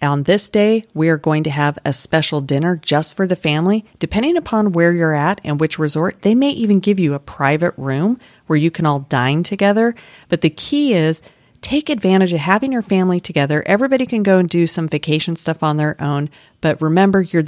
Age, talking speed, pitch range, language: 40-59, 215 wpm, 145-195 Hz, English